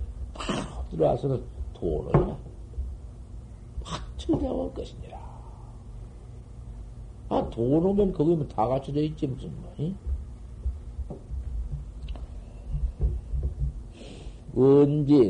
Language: Korean